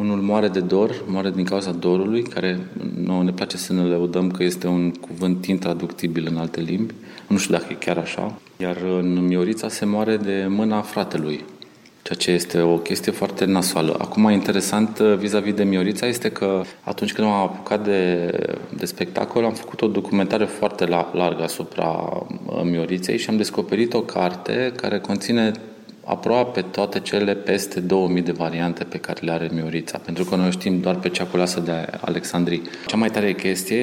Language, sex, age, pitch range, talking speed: Romanian, male, 30-49, 85-100 Hz, 175 wpm